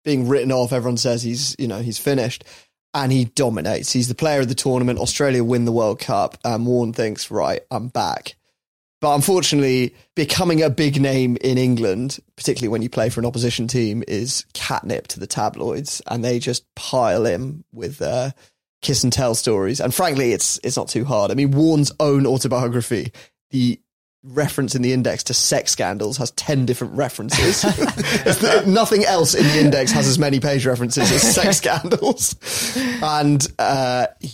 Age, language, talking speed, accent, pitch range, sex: 20-39, English, 175 wpm, British, 120-140 Hz, male